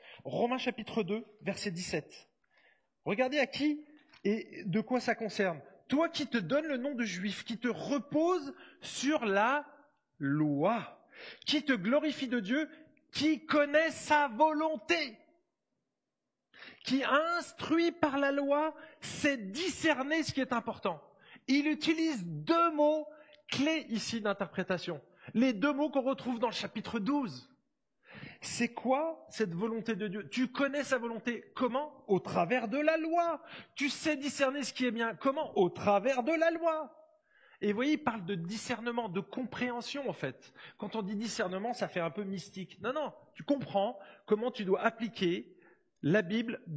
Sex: male